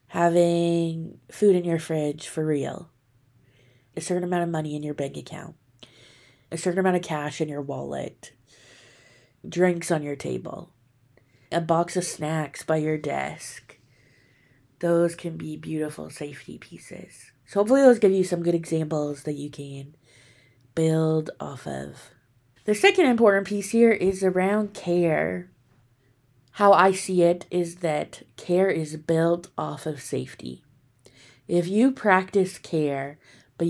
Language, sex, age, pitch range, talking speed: English, female, 20-39, 135-175 Hz, 140 wpm